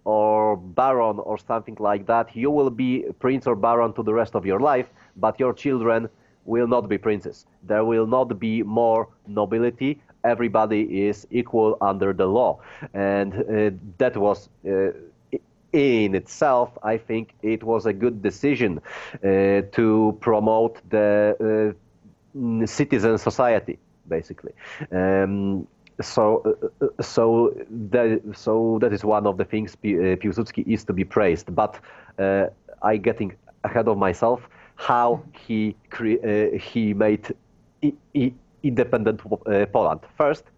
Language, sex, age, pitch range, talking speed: English, male, 30-49, 105-120 Hz, 140 wpm